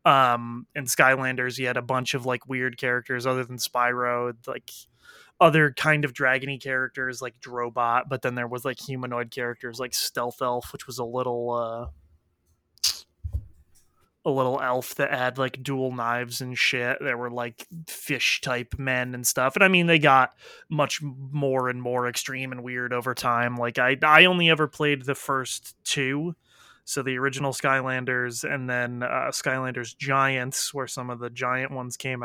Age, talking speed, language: 20-39, 175 wpm, English